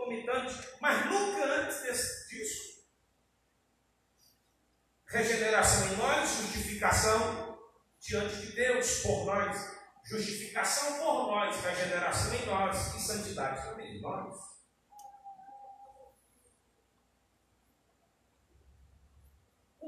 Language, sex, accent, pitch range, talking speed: Portuguese, male, Brazilian, 205-280 Hz, 75 wpm